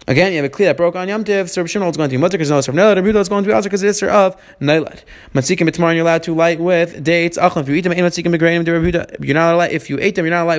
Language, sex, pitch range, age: English, male, 145-180 Hz, 20-39